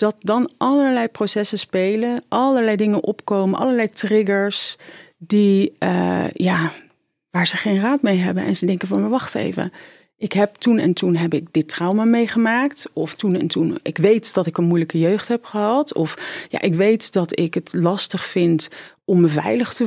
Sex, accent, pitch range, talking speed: female, Dutch, 170-225 Hz, 185 wpm